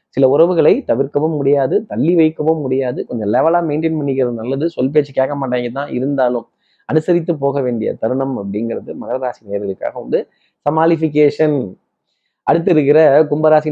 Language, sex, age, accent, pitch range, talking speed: Tamil, male, 20-39, native, 125-160 Hz, 130 wpm